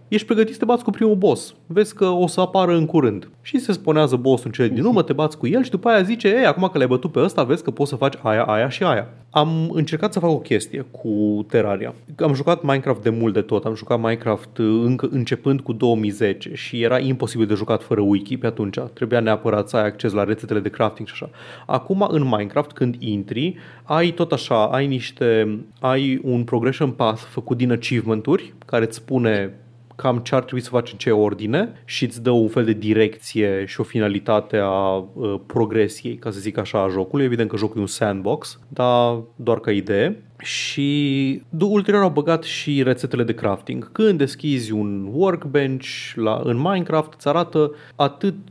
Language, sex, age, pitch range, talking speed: Romanian, male, 30-49, 115-155 Hz, 205 wpm